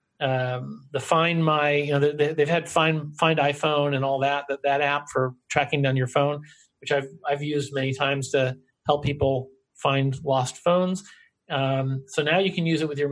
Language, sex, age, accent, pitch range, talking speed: English, male, 40-59, American, 135-165 Hz, 200 wpm